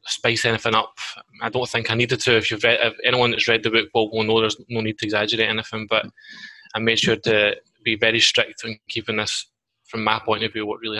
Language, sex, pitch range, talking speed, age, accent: English, male, 110-120 Hz, 230 wpm, 20-39, British